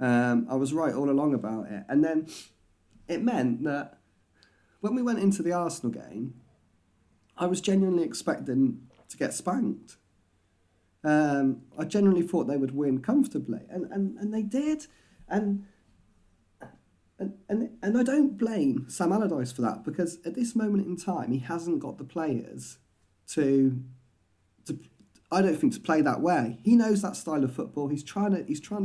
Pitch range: 120-170 Hz